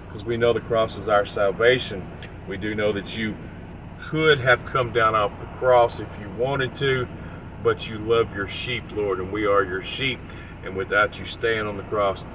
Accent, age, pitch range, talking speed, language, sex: American, 40-59, 90-120 Hz, 200 wpm, English, male